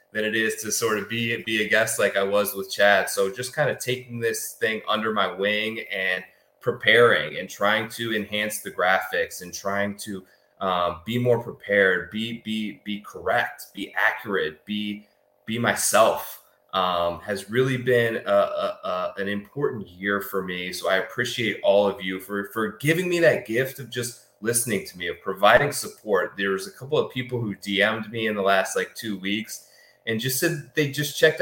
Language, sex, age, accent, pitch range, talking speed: English, male, 20-39, American, 100-125 Hz, 195 wpm